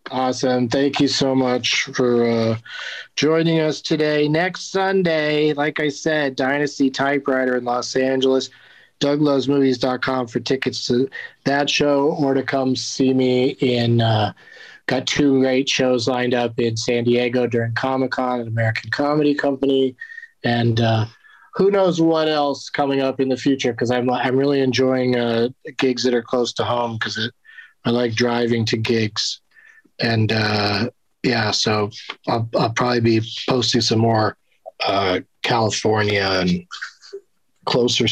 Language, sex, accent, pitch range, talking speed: English, male, American, 115-140 Hz, 145 wpm